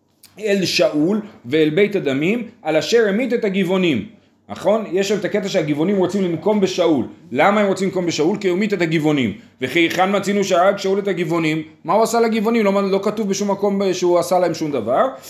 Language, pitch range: Hebrew, 160-210 Hz